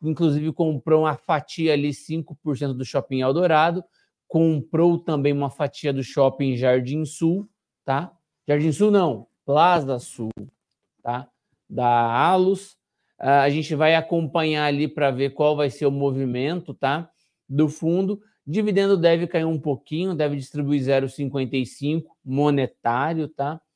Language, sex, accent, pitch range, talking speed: Portuguese, male, Brazilian, 140-175 Hz, 130 wpm